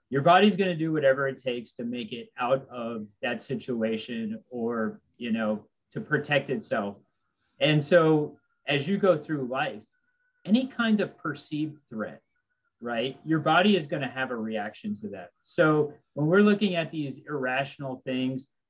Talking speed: 165 wpm